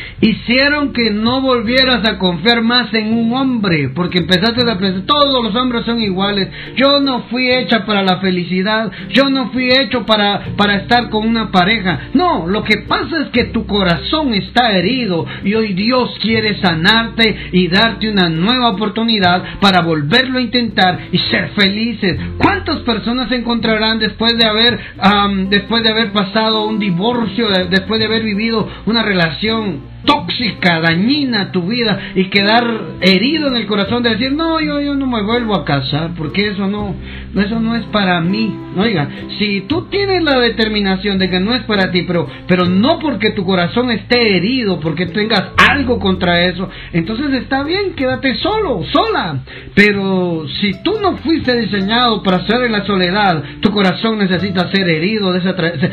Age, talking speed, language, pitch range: 50-69, 170 wpm, Spanish, 185-235 Hz